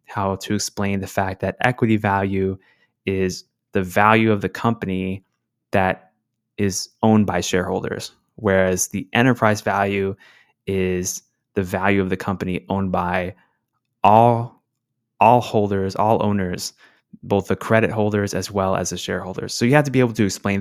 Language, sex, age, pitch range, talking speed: English, male, 20-39, 95-115 Hz, 155 wpm